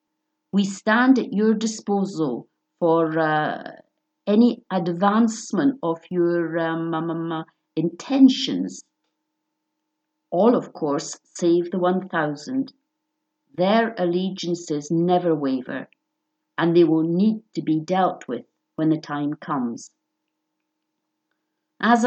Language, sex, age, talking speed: English, female, 50-69, 100 wpm